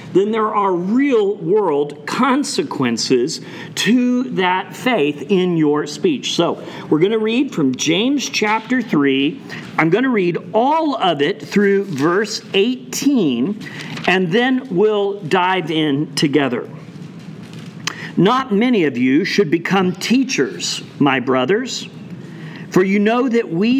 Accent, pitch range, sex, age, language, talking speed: American, 165-230 Hz, male, 50-69, English, 125 wpm